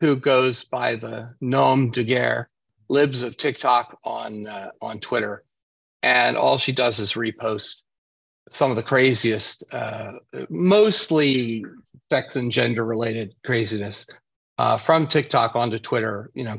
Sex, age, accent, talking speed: male, 40-59, American, 135 wpm